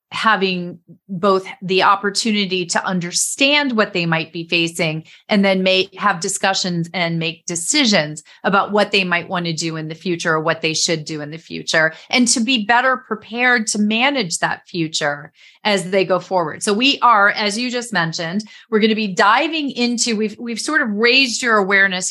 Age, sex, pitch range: 30-49, female, 175-225 Hz